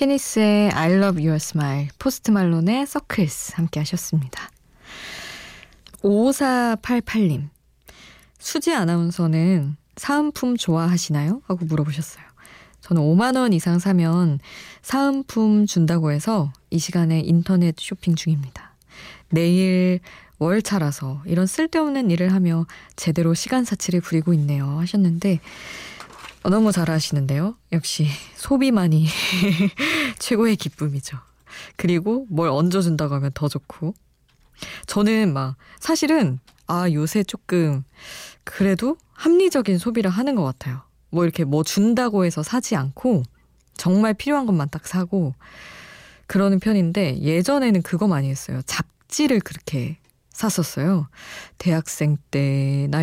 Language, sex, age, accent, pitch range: Korean, female, 20-39, native, 155-215 Hz